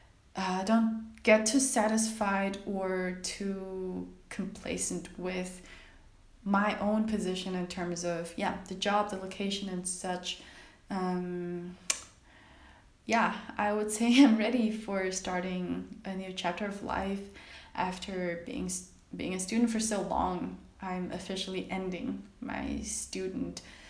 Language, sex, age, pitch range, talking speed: English, female, 20-39, 185-215 Hz, 125 wpm